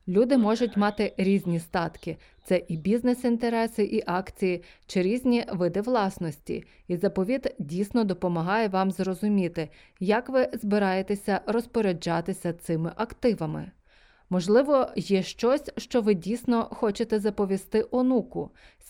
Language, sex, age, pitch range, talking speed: Ukrainian, female, 30-49, 180-235 Hz, 115 wpm